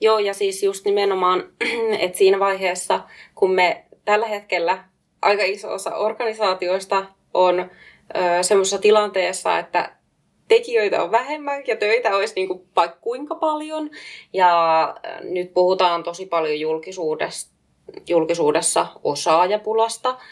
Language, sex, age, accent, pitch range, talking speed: Finnish, female, 20-39, native, 180-245 Hz, 110 wpm